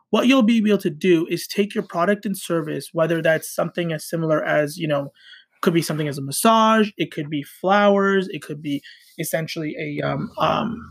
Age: 20-39